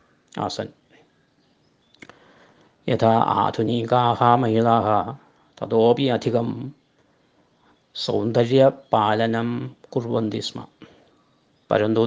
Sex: male